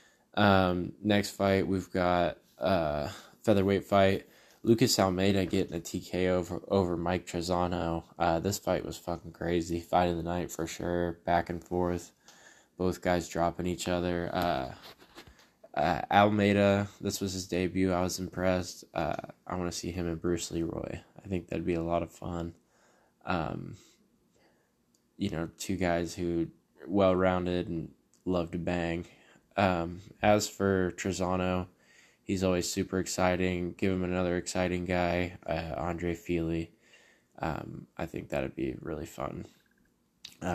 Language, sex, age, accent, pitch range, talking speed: English, male, 10-29, American, 85-95 Hz, 150 wpm